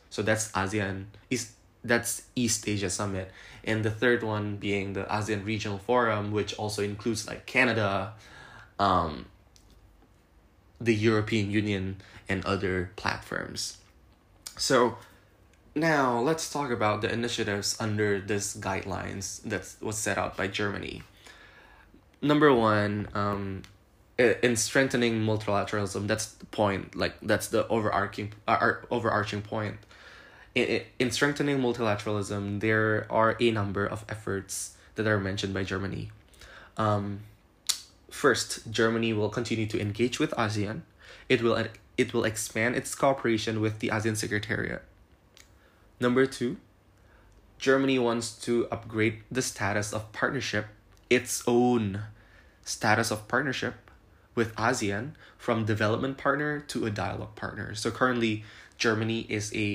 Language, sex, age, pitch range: Indonesian, male, 20-39, 100-115 Hz